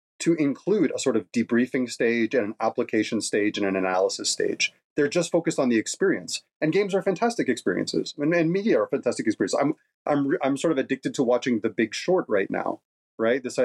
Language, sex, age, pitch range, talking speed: English, male, 30-49, 110-165 Hz, 205 wpm